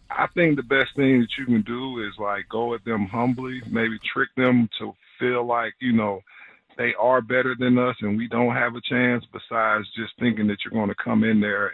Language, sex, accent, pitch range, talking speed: English, male, American, 105-125 Hz, 225 wpm